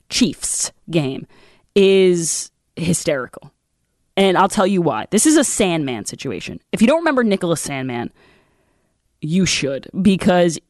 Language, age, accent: English, 20-39, American